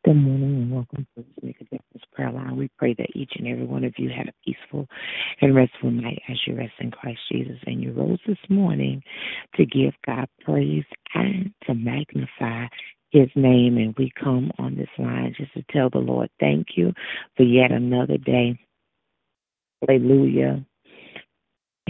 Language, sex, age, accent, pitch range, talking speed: English, female, 40-59, American, 135-220 Hz, 170 wpm